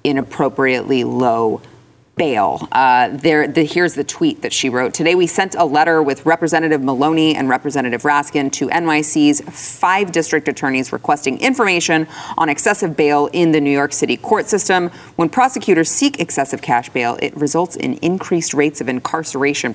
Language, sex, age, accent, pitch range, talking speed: English, female, 30-49, American, 140-170 Hz, 160 wpm